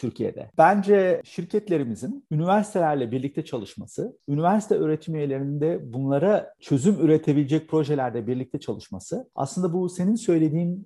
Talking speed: 110 wpm